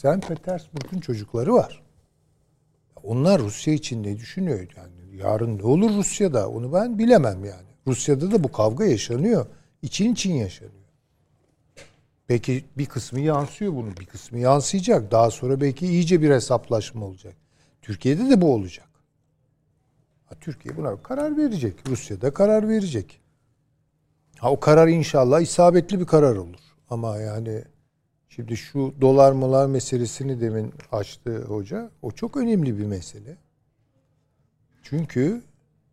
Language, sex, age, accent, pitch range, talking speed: Turkish, male, 60-79, native, 120-170 Hz, 125 wpm